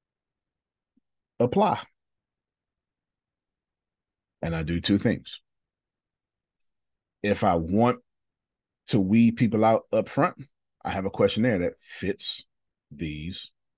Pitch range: 85-135 Hz